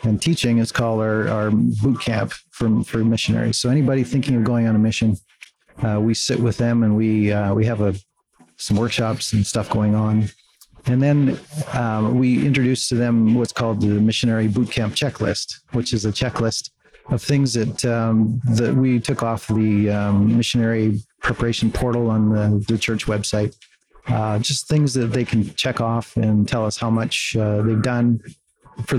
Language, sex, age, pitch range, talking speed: English, male, 40-59, 110-120 Hz, 185 wpm